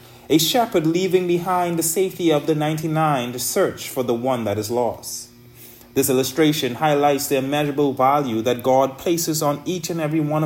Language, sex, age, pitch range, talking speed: English, male, 30-49, 120-145 Hz, 180 wpm